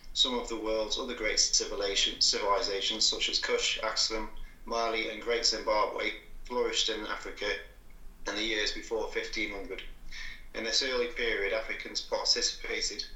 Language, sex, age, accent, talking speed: English, male, 30-49, British, 135 wpm